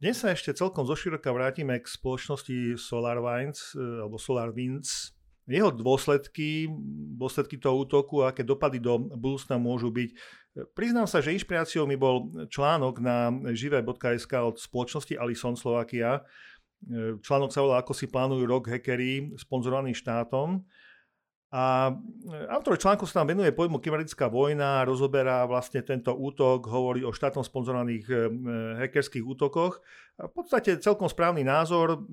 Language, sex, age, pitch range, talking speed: Slovak, male, 50-69, 125-155 Hz, 135 wpm